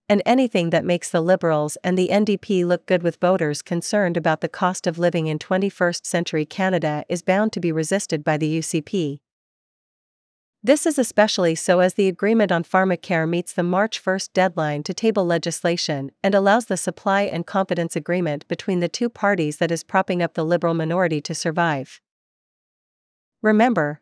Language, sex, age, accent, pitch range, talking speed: English, female, 40-59, American, 165-195 Hz, 170 wpm